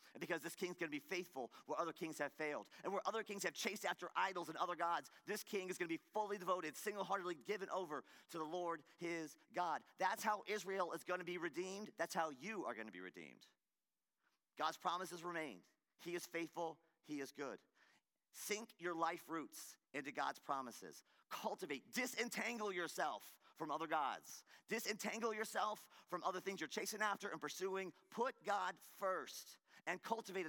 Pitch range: 170-215 Hz